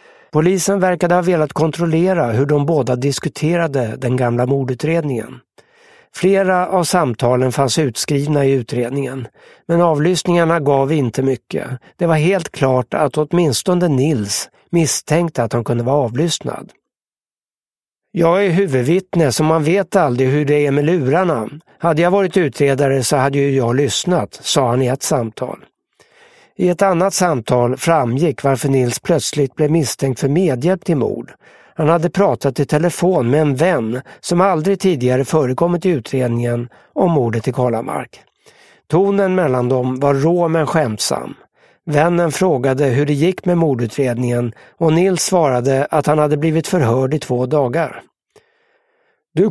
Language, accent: English, Swedish